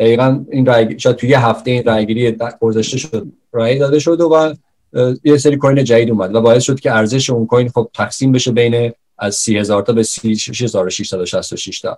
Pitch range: 110-130 Hz